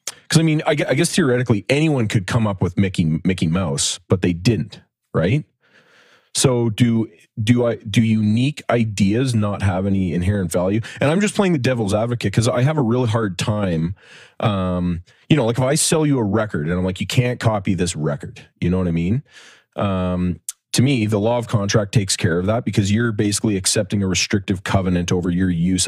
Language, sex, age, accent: English, male, 30-49, American